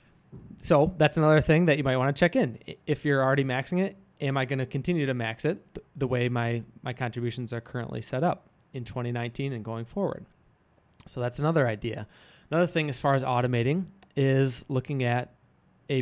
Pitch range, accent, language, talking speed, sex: 115-140 Hz, American, English, 195 wpm, male